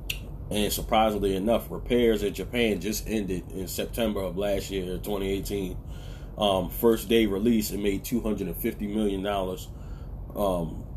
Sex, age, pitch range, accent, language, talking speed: male, 30-49, 90-110 Hz, American, English, 125 wpm